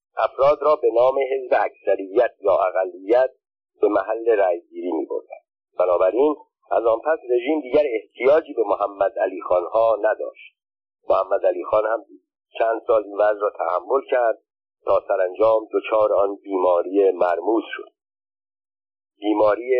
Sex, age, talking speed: male, 50-69, 135 wpm